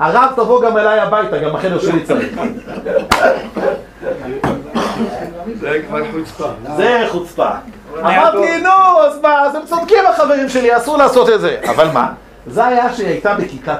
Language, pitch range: Hebrew, 175-285 Hz